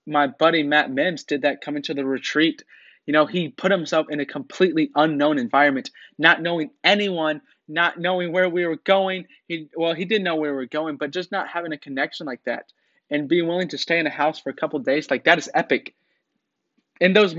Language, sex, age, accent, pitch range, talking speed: English, male, 20-39, American, 145-180 Hz, 225 wpm